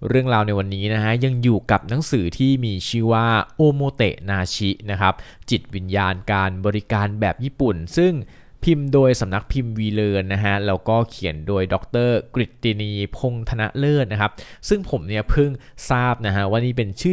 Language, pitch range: Thai, 95-125 Hz